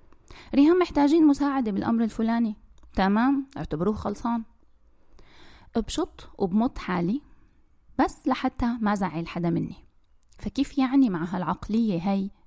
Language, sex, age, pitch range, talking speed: Arabic, female, 20-39, 195-265 Hz, 105 wpm